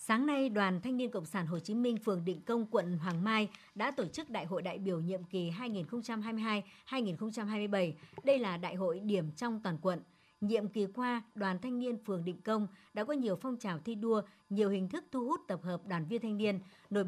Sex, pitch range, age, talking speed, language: male, 185-235 Hz, 60-79, 220 wpm, Vietnamese